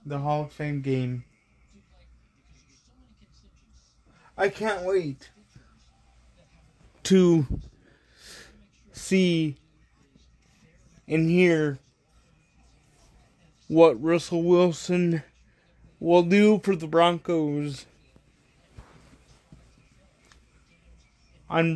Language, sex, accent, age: English, male, American, 20-39